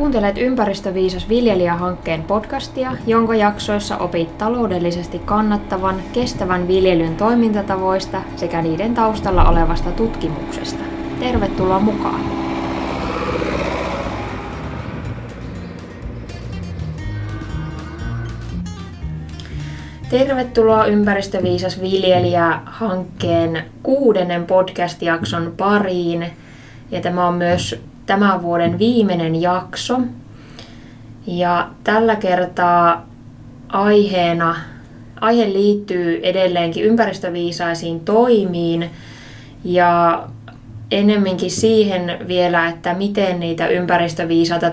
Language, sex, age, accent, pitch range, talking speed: Finnish, female, 20-39, native, 155-195 Hz, 65 wpm